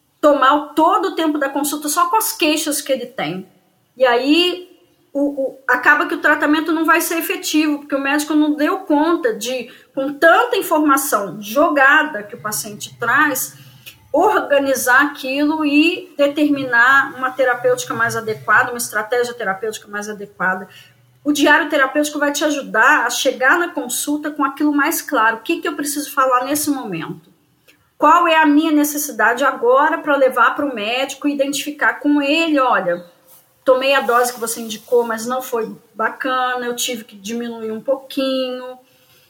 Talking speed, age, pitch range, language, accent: 160 wpm, 20-39, 235-305 Hz, Portuguese, Brazilian